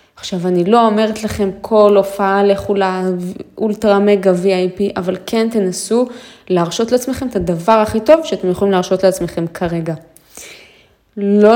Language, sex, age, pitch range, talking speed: Hebrew, female, 20-39, 190-220 Hz, 135 wpm